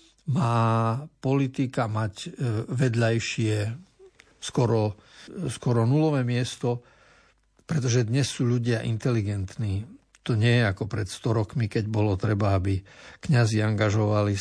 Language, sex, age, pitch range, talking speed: Slovak, male, 60-79, 110-135 Hz, 110 wpm